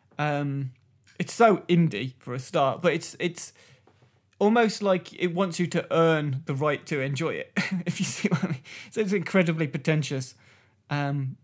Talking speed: 175 wpm